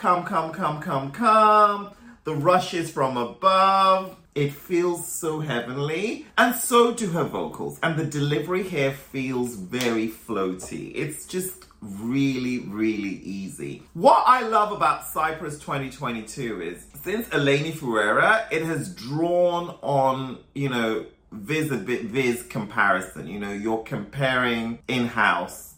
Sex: male